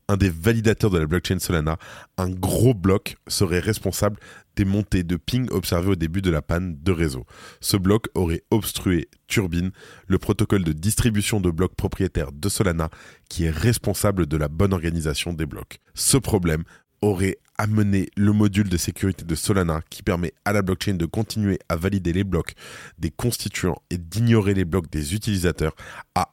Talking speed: 175 wpm